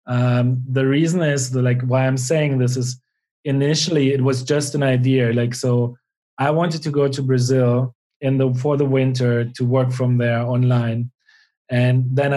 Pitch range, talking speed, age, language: 125-140 Hz, 180 wpm, 30-49, English